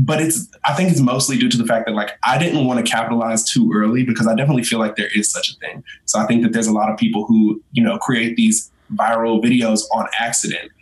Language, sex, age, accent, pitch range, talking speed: English, male, 20-39, American, 110-135 Hz, 260 wpm